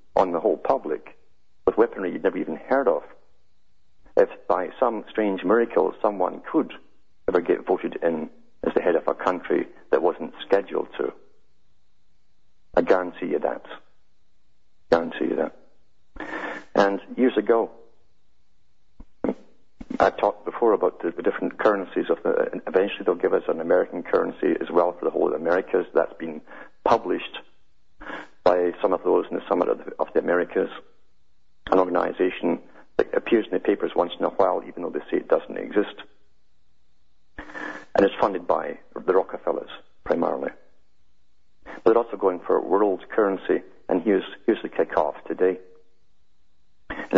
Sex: male